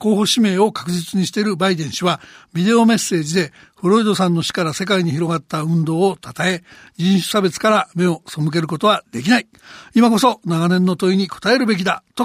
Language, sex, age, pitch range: Japanese, male, 60-79, 180-225 Hz